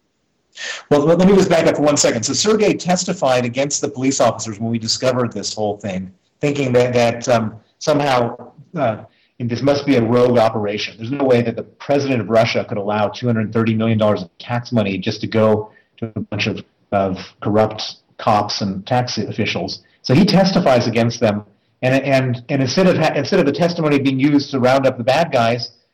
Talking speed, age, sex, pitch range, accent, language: 195 wpm, 40-59, male, 115-140 Hz, American, English